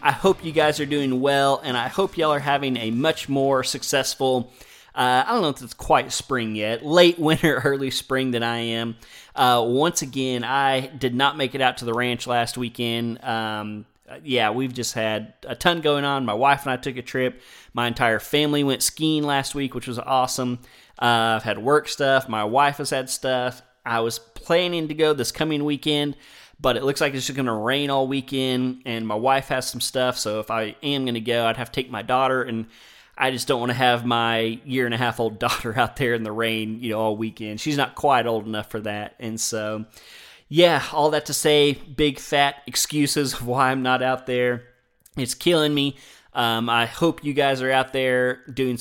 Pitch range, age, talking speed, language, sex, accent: 115-140 Hz, 30-49, 215 wpm, English, male, American